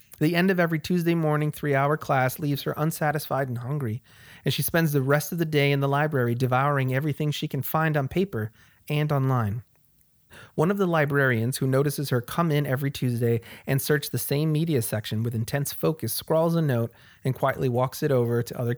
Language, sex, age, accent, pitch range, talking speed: English, male, 30-49, American, 120-150 Hz, 200 wpm